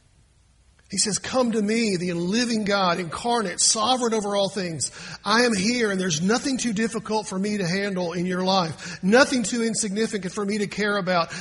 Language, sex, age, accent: English, male, 50-69, American